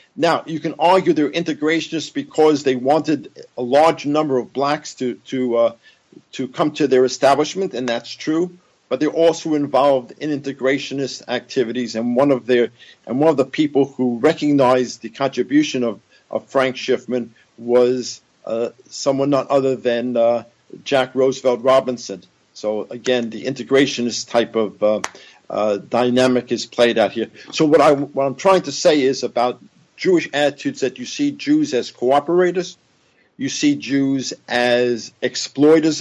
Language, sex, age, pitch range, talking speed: English, male, 50-69, 125-155 Hz, 165 wpm